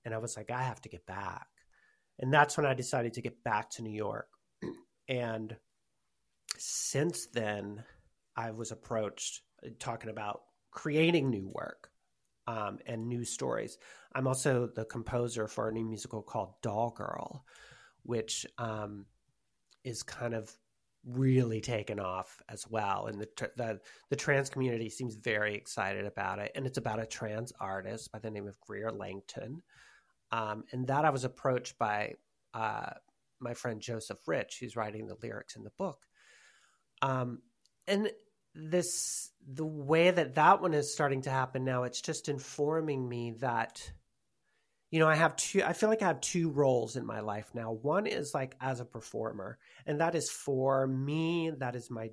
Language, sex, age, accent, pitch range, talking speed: English, male, 30-49, American, 110-145 Hz, 170 wpm